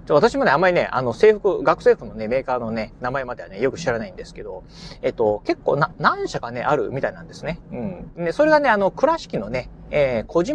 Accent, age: native, 30-49